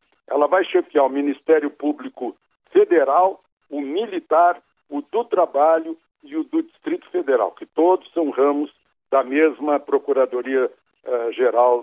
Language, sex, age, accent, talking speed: Portuguese, male, 60-79, Brazilian, 120 wpm